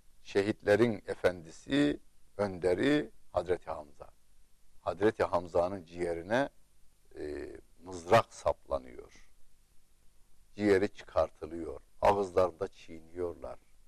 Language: Turkish